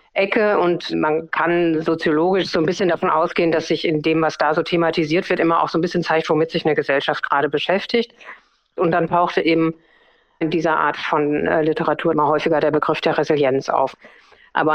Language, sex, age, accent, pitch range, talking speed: German, female, 50-69, German, 155-180 Hz, 195 wpm